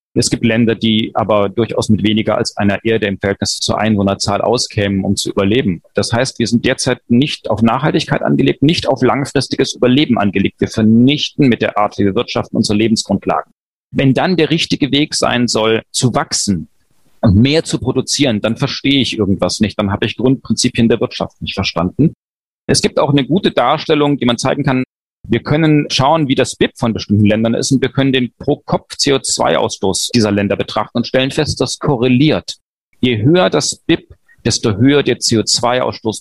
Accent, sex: German, male